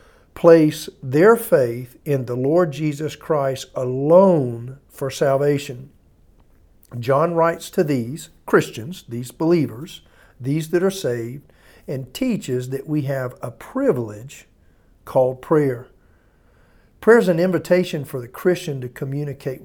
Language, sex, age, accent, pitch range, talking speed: English, male, 50-69, American, 125-170 Hz, 120 wpm